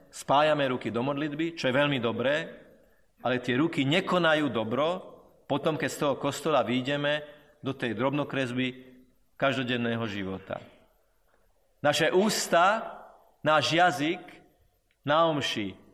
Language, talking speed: Slovak, 110 wpm